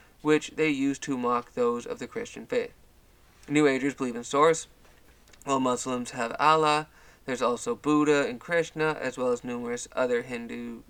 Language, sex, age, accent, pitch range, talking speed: English, male, 20-39, American, 130-155 Hz, 165 wpm